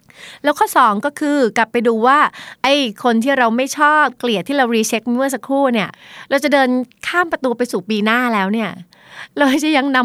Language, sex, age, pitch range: Thai, female, 30-49, 195-255 Hz